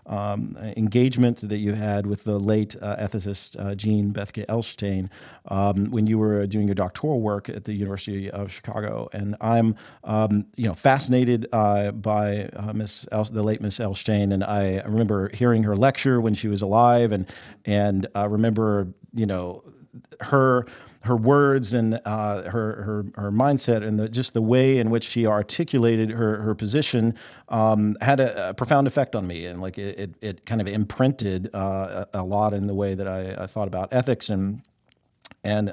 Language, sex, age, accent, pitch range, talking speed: English, male, 40-59, American, 100-115 Hz, 185 wpm